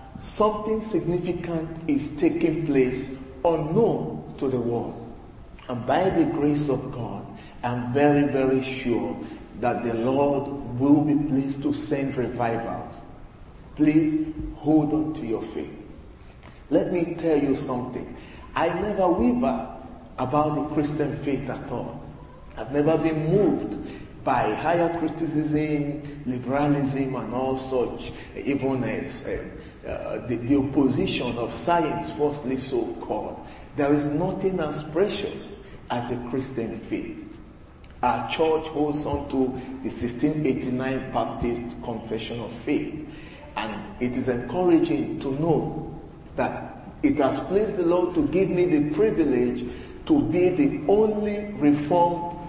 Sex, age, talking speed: male, 40-59, 125 wpm